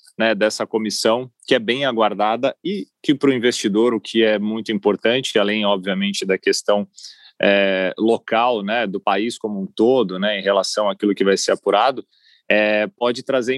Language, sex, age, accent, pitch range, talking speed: Portuguese, male, 30-49, Brazilian, 110-135 Hz, 175 wpm